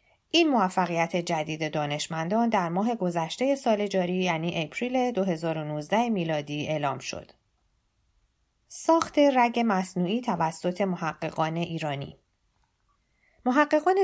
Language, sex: Persian, female